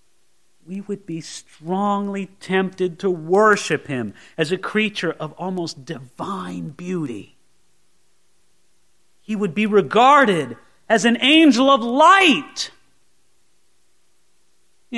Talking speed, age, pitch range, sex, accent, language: 100 wpm, 40-59, 125-180 Hz, male, American, English